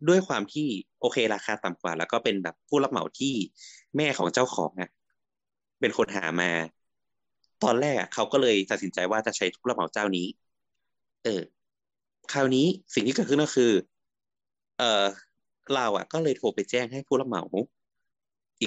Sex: male